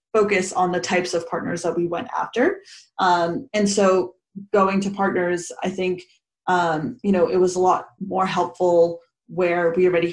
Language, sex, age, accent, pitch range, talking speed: English, female, 20-39, American, 170-195 Hz, 180 wpm